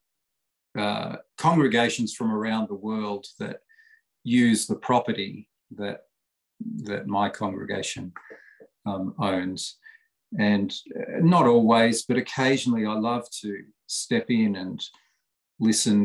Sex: male